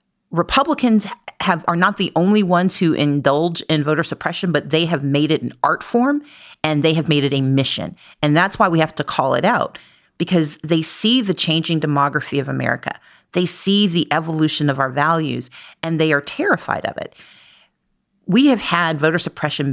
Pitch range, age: 140-170 Hz, 40-59